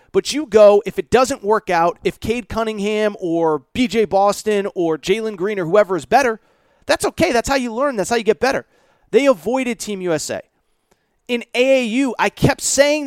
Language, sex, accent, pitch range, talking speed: English, male, American, 220-290 Hz, 190 wpm